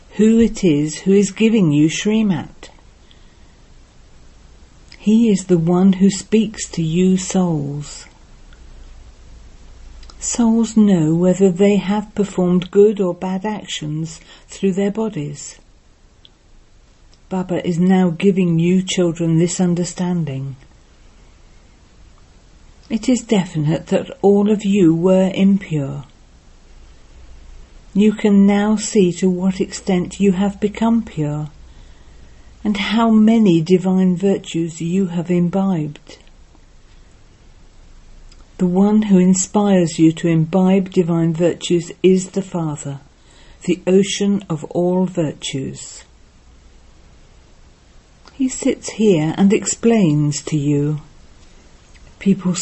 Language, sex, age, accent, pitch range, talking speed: English, female, 50-69, British, 145-195 Hz, 105 wpm